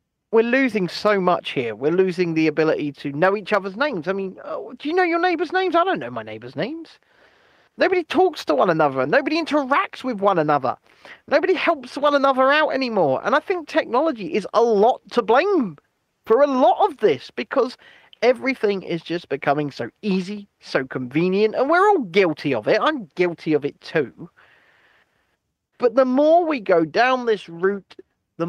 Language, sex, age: English, male, 30-49